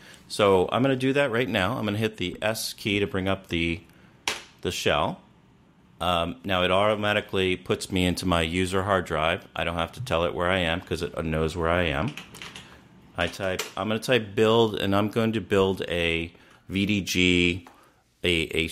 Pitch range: 85-115 Hz